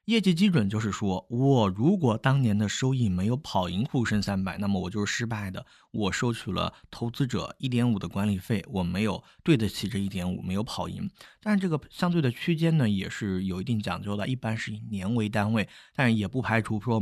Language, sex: Chinese, male